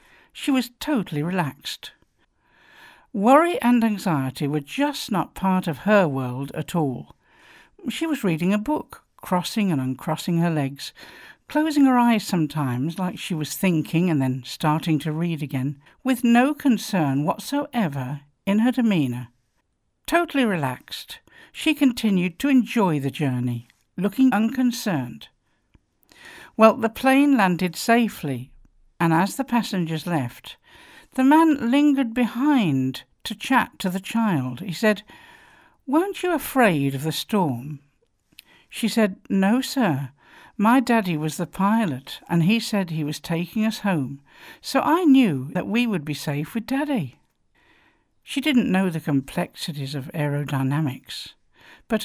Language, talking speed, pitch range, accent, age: English, 135 wpm, 150-240 Hz, British, 60-79